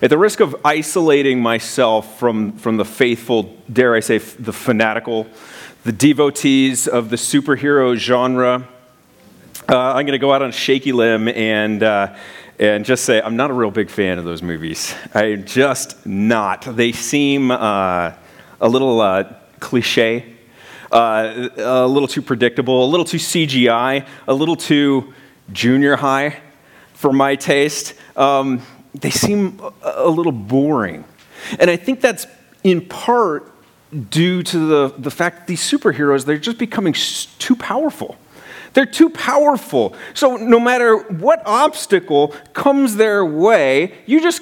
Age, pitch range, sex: 30-49, 125-175 Hz, male